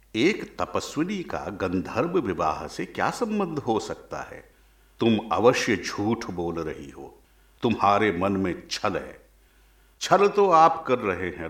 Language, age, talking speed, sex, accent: Hindi, 50-69, 145 wpm, male, native